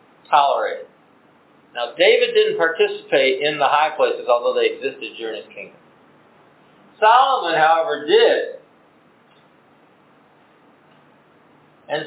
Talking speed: 95 wpm